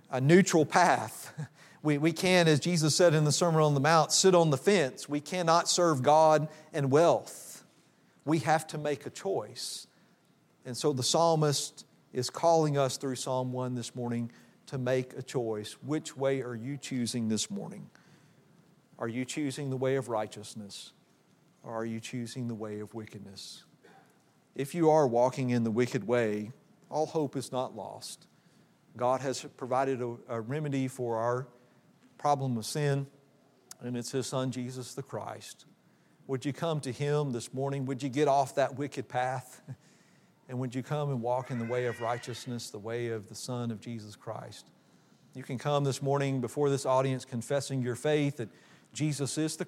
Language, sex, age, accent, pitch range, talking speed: English, male, 50-69, American, 125-150 Hz, 180 wpm